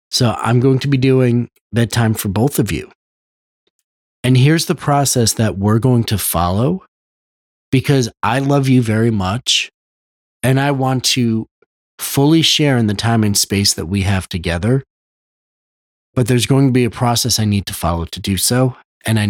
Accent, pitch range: American, 100-130 Hz